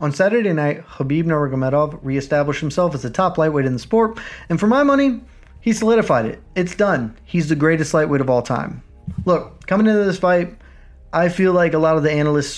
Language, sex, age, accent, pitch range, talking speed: English, male, 30-49, American, 135-165 Hz, 205 wpm